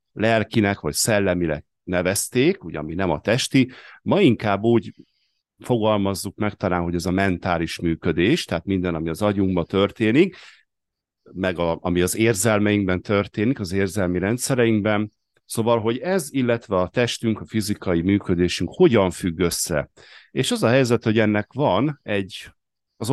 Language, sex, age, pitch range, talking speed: Hungarian, male, 50-69, 90-110 Hz, 140 wpm